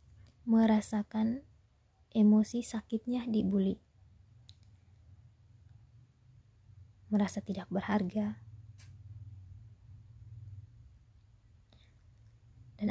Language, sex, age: Indonesian, female, 20-39